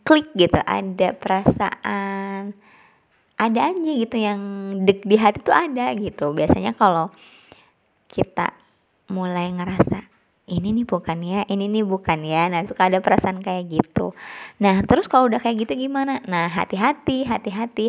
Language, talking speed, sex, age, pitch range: Indonesian, 145 wpm, male, 20-39, 190-240 Hz